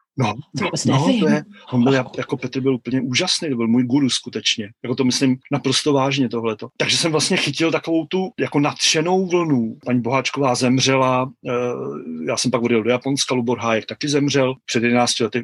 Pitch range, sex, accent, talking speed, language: 120-140 Hz, male, native, 190 wpm, Czech